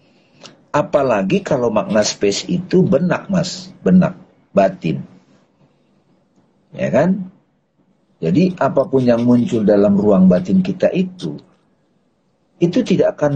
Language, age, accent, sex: Indonesian, 50-69, native, male